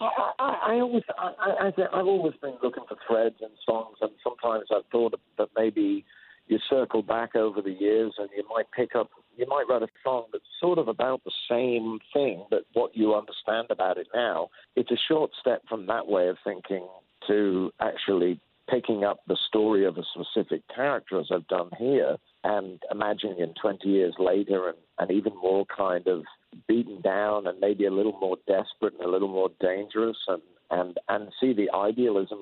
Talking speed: 190 wpm